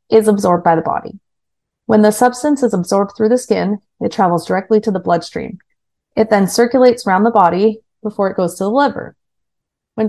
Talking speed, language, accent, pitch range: 190 wpm, English, American, 175-230 Hz